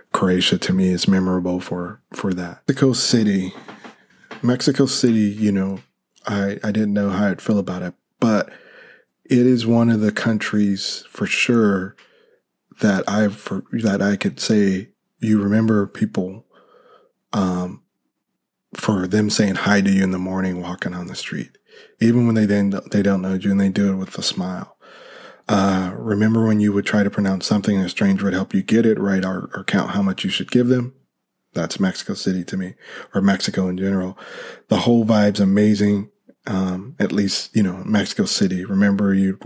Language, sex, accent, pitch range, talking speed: English, male, American, 95-110 Hz, 185 wpm